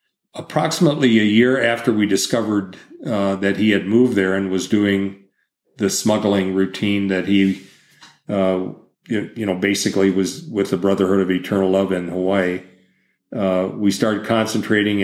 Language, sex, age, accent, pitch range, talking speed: English, male, 40-59, American, 95-110 Hz, 150 wpm